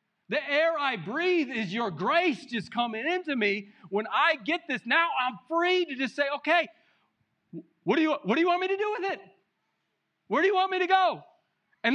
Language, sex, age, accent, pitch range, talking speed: English, male, 40-59, American, 225-320 Hz, 210 wpm